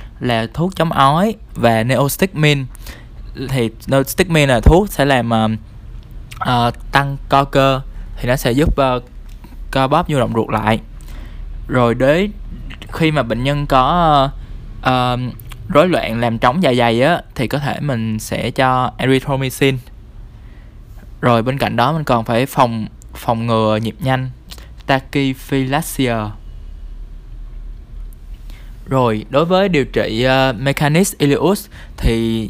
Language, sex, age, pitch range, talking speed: Vietnamese, male, 20-39, 110-140 Hz, 135 wpm